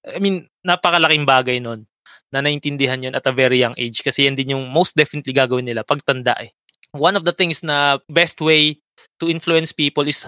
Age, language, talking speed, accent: 20-39, Filipino, 200 wpm, native